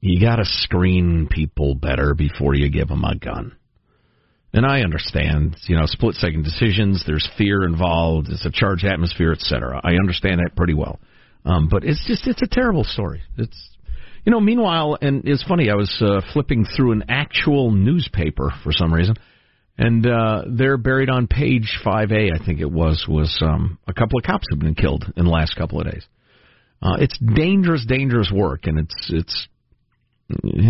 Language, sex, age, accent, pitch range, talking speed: English, male, 50-69, American, 85-125 Hz, 185 wpm